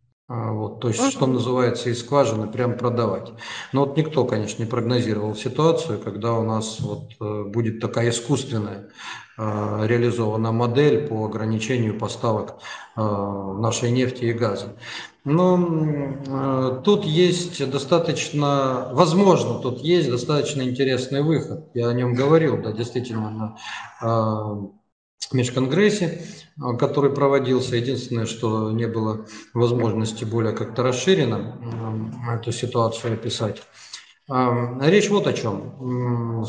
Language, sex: Russian, male